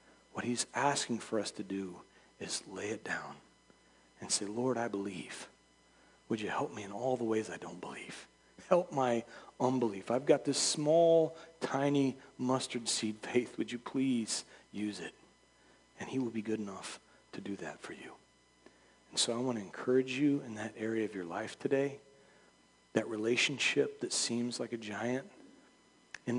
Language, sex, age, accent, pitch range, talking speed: English, male, 40-59, American, 110-140 Hz, 175 wpm